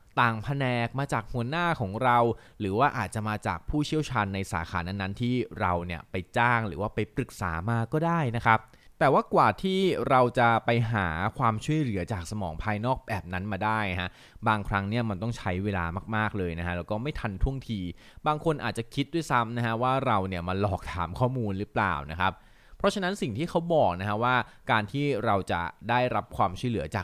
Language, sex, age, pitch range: Thai, male, 20-39, 95-125 Hz